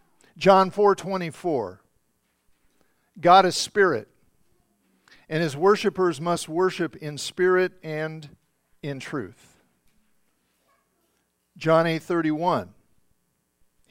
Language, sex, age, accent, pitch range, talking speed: English, male, 50-69, American, 135-185 Hz, 75 wpm